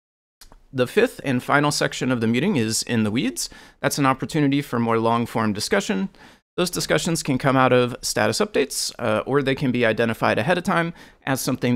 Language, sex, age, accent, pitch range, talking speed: English, male, 30-49, American, 110-140 Hz, 195 wpm